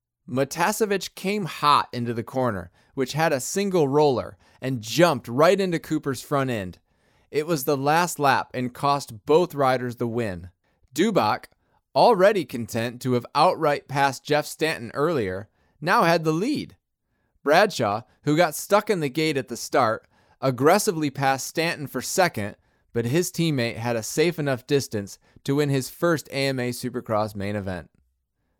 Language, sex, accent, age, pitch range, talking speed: English, male, American, 20-39, 115-155 Hz, 155 wpm